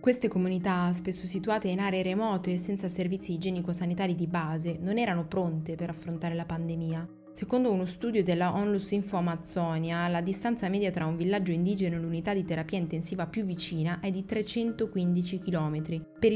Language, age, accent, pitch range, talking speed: Italian, 20-39, native, 165-195 Hz, 170 wpm